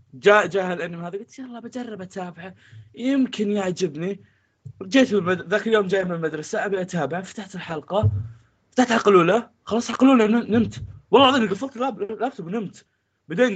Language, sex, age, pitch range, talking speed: Arabic, male, 20-39, 130-205 Hz, 140 wpm